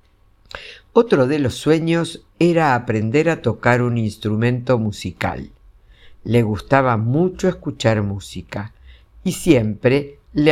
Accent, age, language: Argentinian, 60-79, Spanish